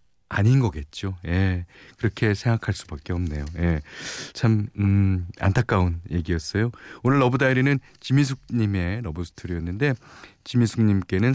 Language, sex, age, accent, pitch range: Korean, male, 40-59, native, 90-130 Hz